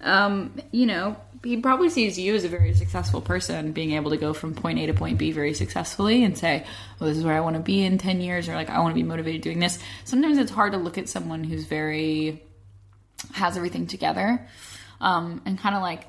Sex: female